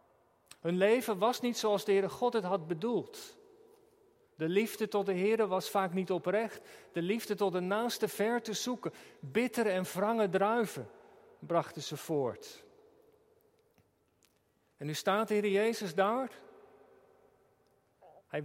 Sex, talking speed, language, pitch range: male, 140 wpm, Dutch, 185-255 Hz